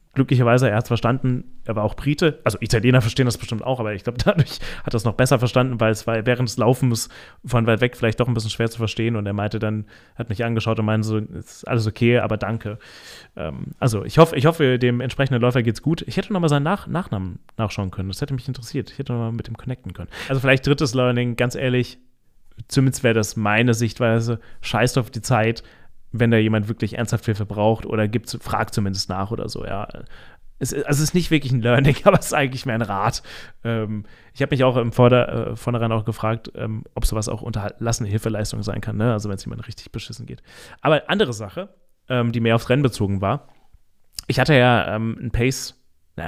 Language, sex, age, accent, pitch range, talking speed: German, male, 30-49, German, 110-130 Hz, 225 wpm